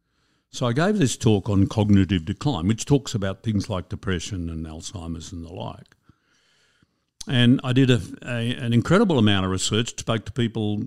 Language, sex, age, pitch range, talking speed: English, male, 60-79, 95-120 Hz, 175 wpm